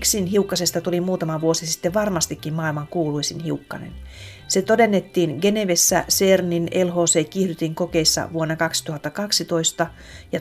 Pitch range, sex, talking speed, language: 160-185 Hz, female, 110 wpm, Finnish